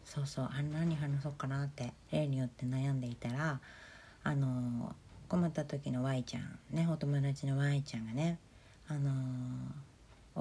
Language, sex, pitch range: Japanese, female, 125-175 Hz